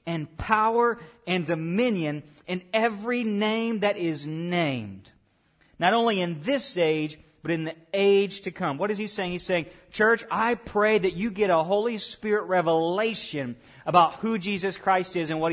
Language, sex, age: English, male, 40-59